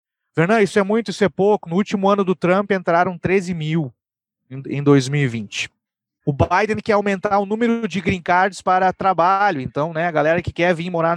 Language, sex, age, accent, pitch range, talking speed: Portuguese, male, 30-49, Brazilian, 150-190 Hz, 195 wpm